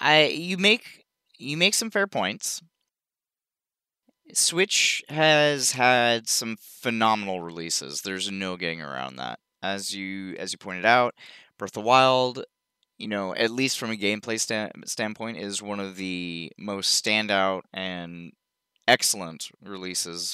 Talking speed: 140 wpm